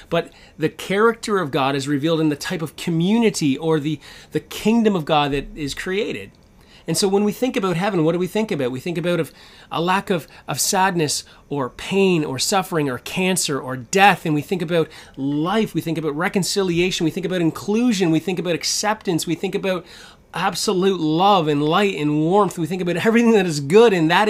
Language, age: English, 30-49